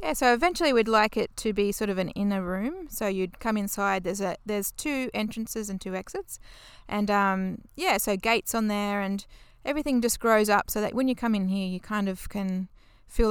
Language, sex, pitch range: English, female, 190-225 Hz